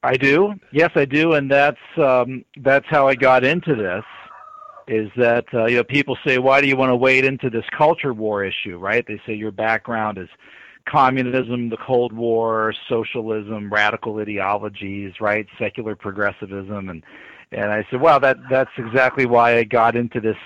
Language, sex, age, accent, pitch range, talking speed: English, male, 50-69, American, 110-130 Hz, 180 wpm